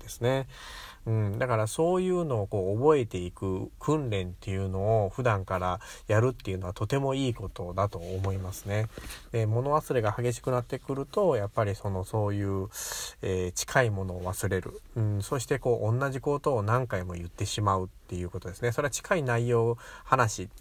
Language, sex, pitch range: Japanese, male, 95-130 Hz